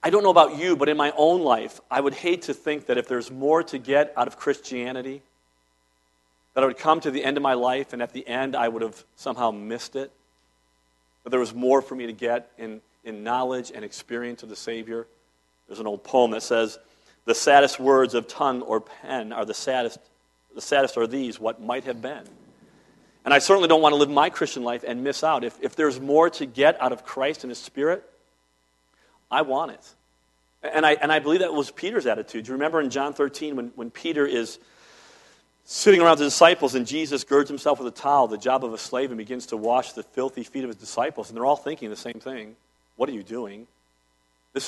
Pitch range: 110-140 Hz